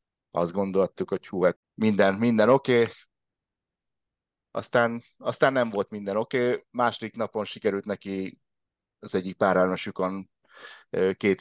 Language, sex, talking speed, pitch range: Hungarian, male, 120 wpm, 90-110 Hz